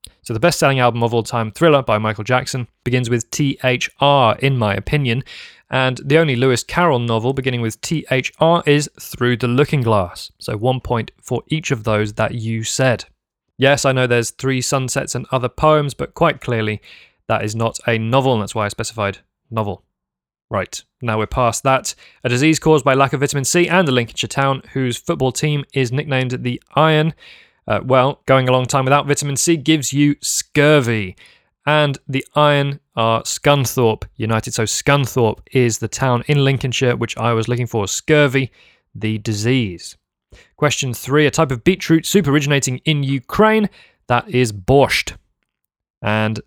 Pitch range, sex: 115-140 Hz, male